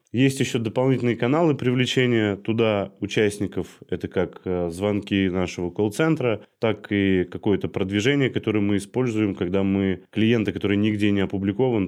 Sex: male